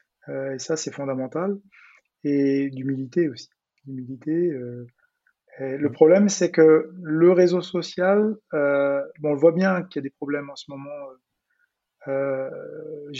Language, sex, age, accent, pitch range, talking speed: French, male, 30-49, French, 135-175 Hz, 145 wpm